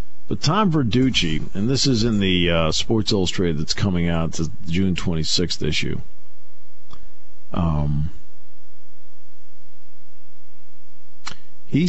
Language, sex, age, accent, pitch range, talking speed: English, male, 50-69, American, 75-110 Hz, 100 wpm